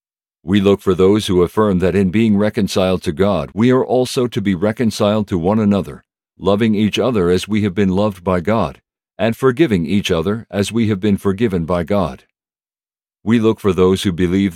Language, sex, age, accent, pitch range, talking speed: English, male, 50-69, American, 95-115 Hz, 200 wpm